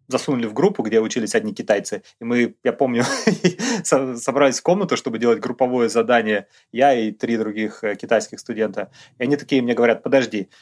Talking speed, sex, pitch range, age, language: 170 wpm, male, 120-155 Hz, 20-39, Russian